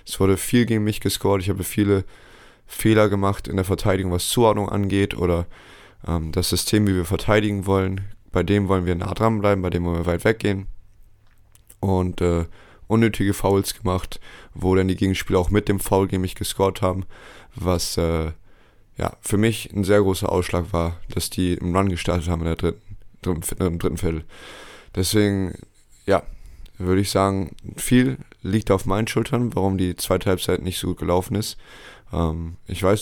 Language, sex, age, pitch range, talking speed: German, male, 20-39, 90-100 Hz, 180 wpm